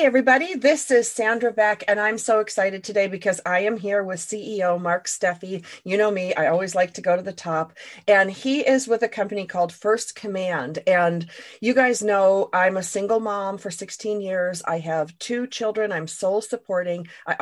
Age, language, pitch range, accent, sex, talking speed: 40-59, English, 180-215 Hz, American, female, 200 wpm